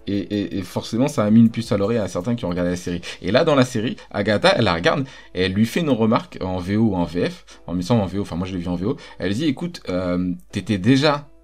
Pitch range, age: 90-115 Hz, 20-39